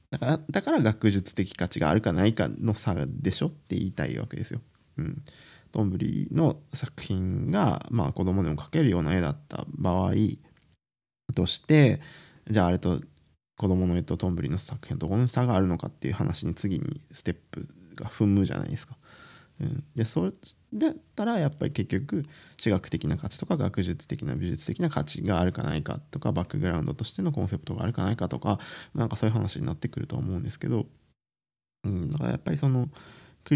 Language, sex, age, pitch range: Japanese, male, 20-39, 95-155 Hz